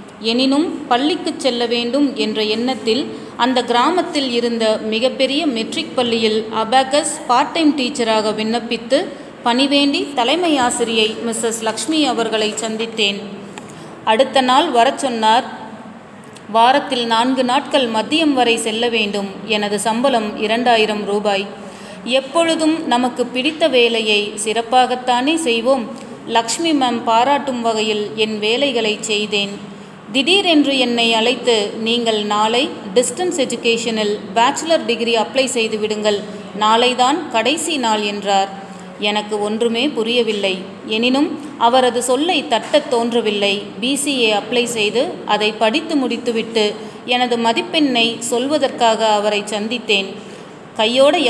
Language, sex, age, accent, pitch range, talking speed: Tamil, female, 30-49, native, 215-260 Hz, 105 wpm